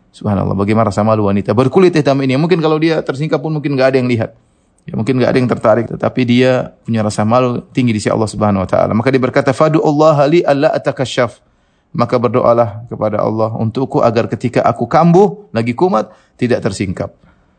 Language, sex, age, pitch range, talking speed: Indonesian, male, 30-49, 100-125 Hz, 195 wpm